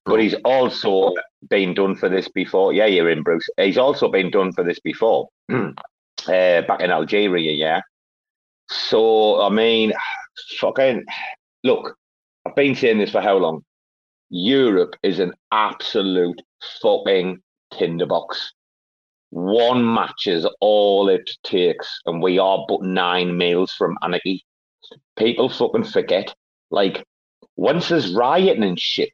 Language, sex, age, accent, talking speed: English, male, 30-49, British, 135 wpm